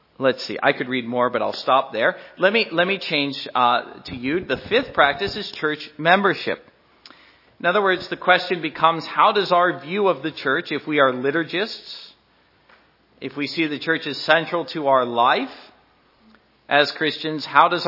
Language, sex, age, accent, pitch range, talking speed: English, male, 40-59, American, 140-180 Hz, 185 wpm